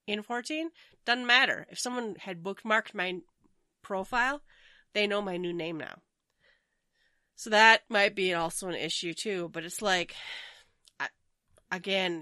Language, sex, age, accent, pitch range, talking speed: English, female, 30-49, American, 180-235 Hz, 140 wpm